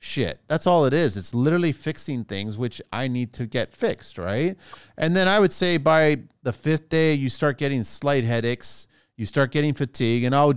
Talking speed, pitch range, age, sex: 205 wpm, 115-145 Hz, 30-49, male